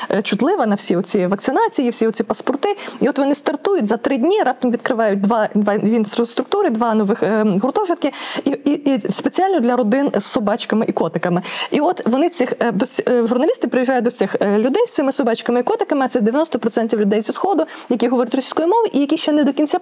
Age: 20-39